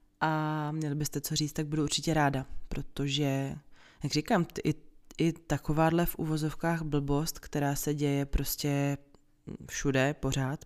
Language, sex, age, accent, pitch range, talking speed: Czech, female, 20-39, native, 140-160 Hz, 135 wpm